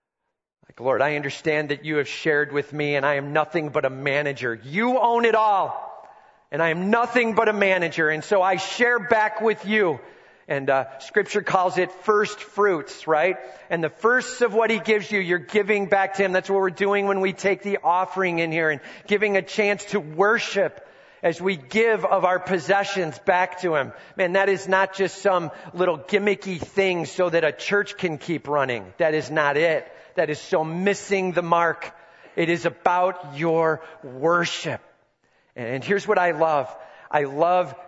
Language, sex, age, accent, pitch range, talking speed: English, male, 40-59, American, 155-195 Hz, 190 wpm